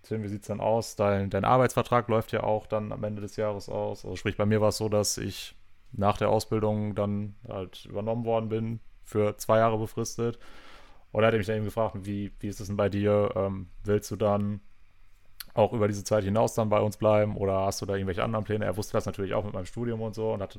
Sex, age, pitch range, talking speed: male, 30-49, 100-110 Hz, 250 wpm